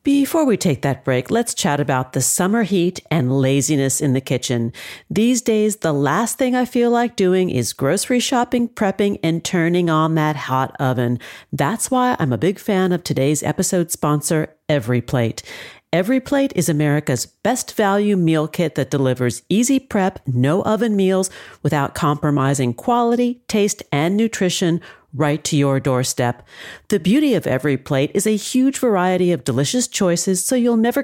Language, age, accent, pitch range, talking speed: English, 50-69, American, 145-235 Hz, 170 wpm